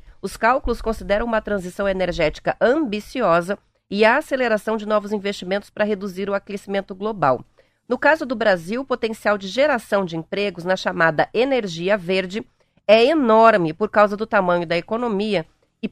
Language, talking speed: Portuguese, 155 wpm